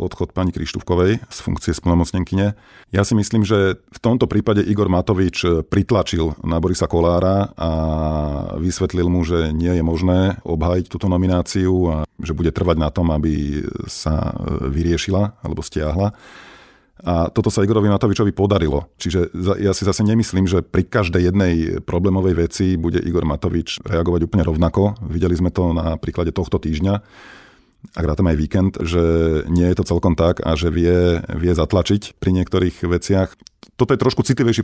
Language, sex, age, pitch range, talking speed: Slovak, male, 40-59, 85-100 Hz, 160 wpm